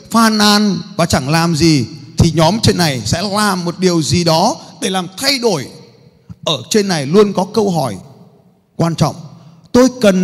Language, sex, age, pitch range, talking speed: Vietnamese, male, 20-39, 140-185 Hz, 180 wpm